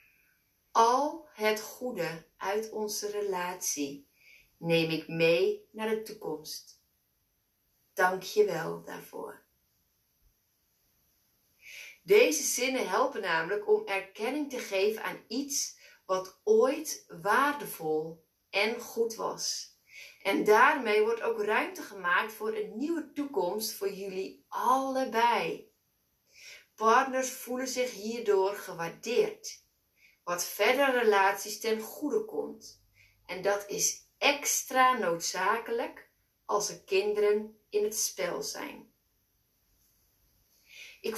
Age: 30-49